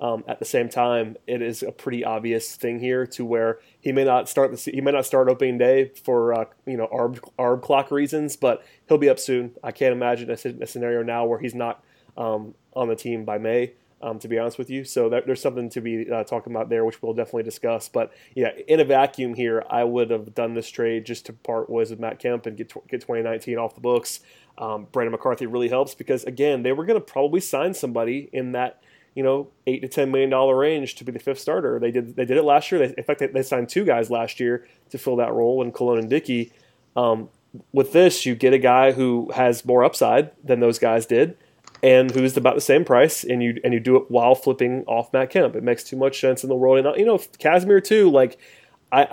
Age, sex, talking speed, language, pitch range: 20-39, male, 245 wpm, English, 120-135 Hz